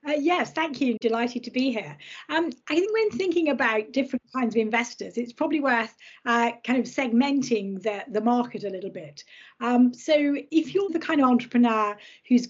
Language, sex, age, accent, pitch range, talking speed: English, female, 40-59, British, 220-275 Hz, 190 wpm